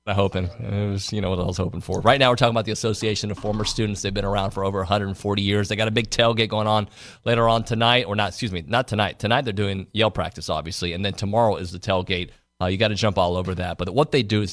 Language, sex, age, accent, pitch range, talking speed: English, male, 30-49, American, 95-120 Hz, 285 wpm